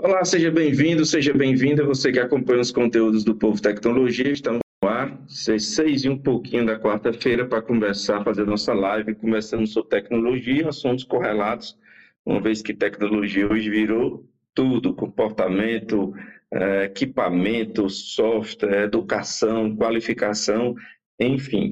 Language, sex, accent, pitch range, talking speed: English, male, Brazilian, 110-145 Hz, 135 wpm